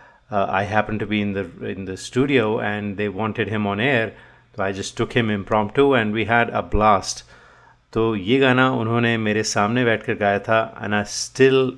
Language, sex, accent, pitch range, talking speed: Hindi, male, native, 100-120 Hz, 200 wpm